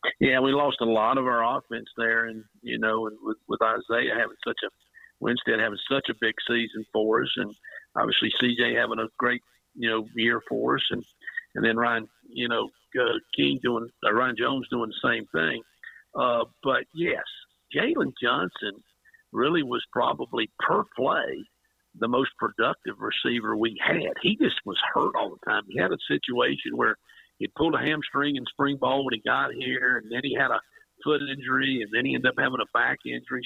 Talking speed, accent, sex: 195 wpm, American, male